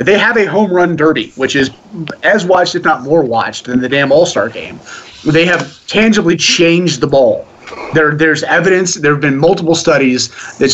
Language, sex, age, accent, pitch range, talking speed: English, male, 30-49, American, 140-170 Hz, 190 wpm